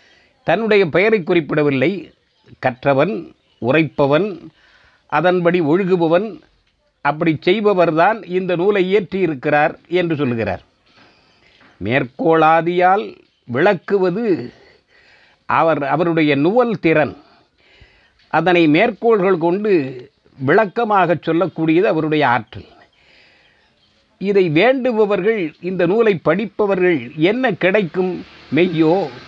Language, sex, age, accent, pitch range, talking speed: Tamil, male, 50-69, native, 145-190 Hz, 75 wpm